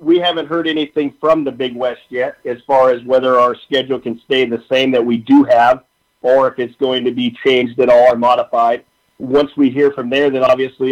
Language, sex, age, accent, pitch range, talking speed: English, male, 40-59, American, 135-155 Hz, 225 wpm